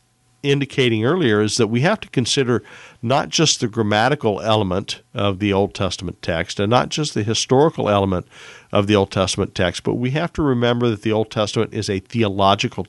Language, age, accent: English, 50-69, American